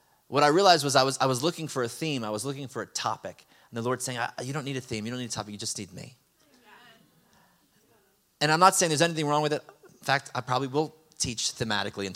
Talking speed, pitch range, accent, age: 260 wpm, 115-140 Hz, American, 30-49